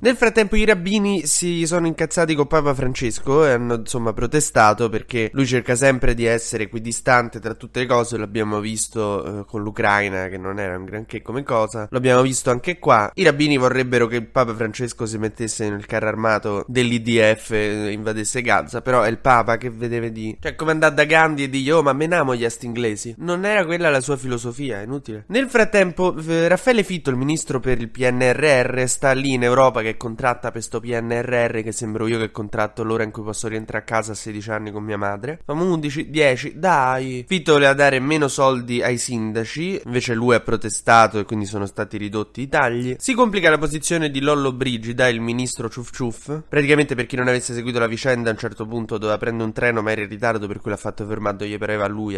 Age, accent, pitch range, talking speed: 20-39, native, 110-140 Hz, 205 wpm